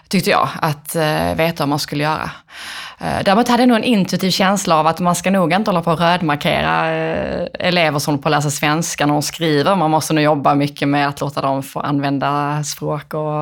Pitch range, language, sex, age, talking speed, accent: 155-185 Hz, Swedish, female, 20-39, 220 wpm, native